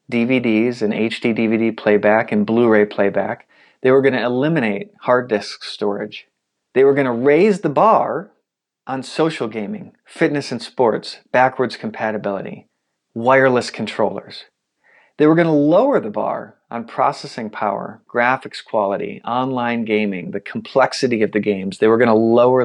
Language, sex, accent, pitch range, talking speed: English, male, American, 110-135 Hz, 150 wpm